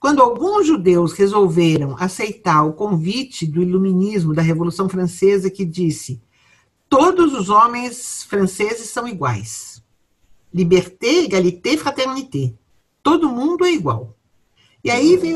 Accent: Brazilian